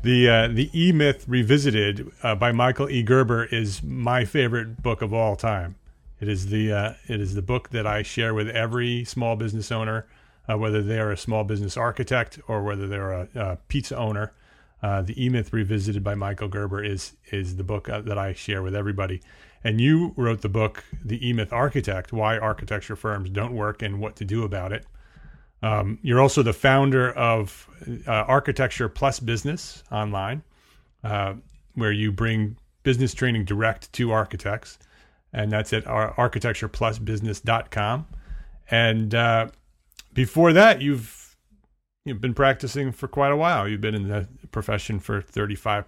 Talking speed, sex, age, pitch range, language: 165 wpm, male, 30-49, 105-125 Hz, English